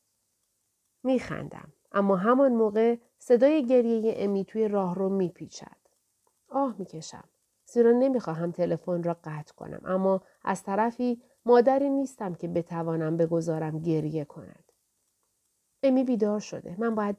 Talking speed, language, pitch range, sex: 120 wpm, Persian, 175-245 Hz, female